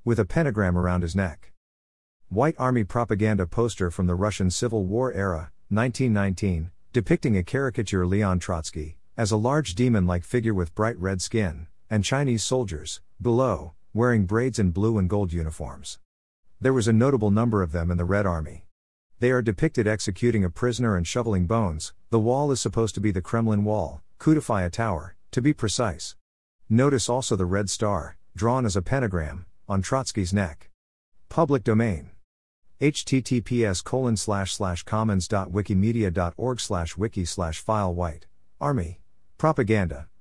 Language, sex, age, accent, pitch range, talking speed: English, male, 50-69, American, 90-115 Hz, 155 wpm